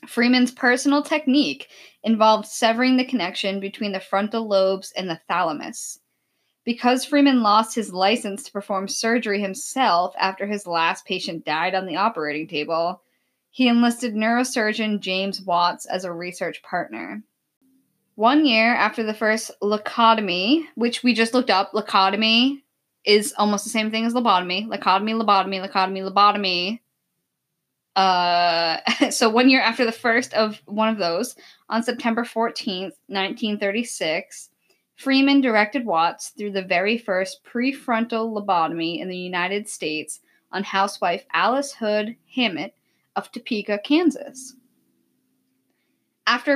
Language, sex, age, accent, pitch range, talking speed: English, female, 10-29, American, 195-250 Hz, 130 wpm